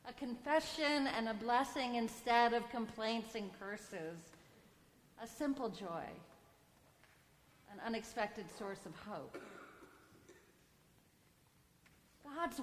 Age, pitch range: 40-59, 215-275 Hz